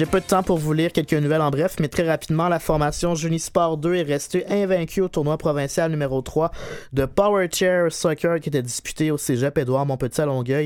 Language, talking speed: French, 210 wpm